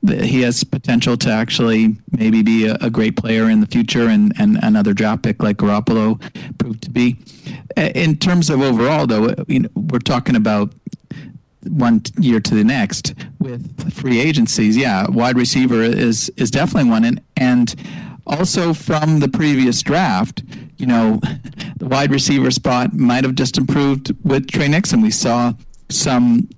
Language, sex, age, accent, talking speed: English, male, 50-69, American, 165 wpm